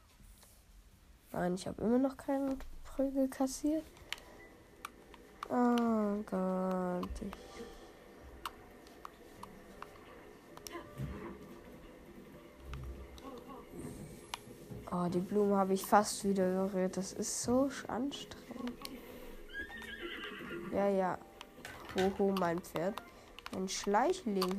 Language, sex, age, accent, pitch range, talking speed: German, female, 10-29, German, 170-260 Hz, 75 wpm